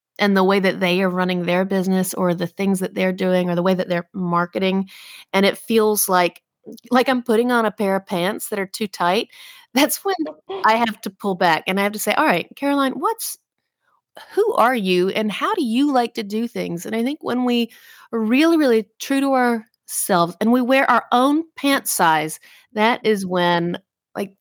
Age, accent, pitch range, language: 30-49, American, 185-250 Hz, English